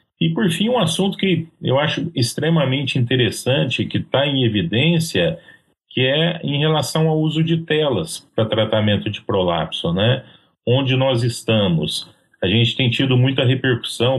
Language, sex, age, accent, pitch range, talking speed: Portuguese, male, 40-59, Brazilian, 105-135 Hz, 150 wpm